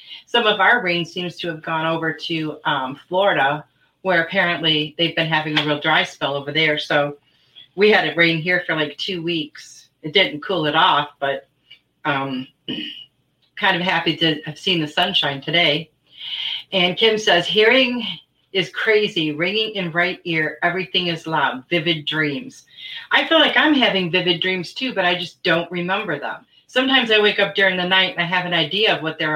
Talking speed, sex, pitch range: 190 wpm, female, 150-190 Hz